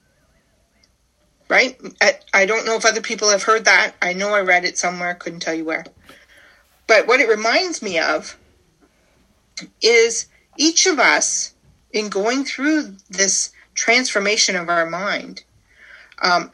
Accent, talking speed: American, 140 wpm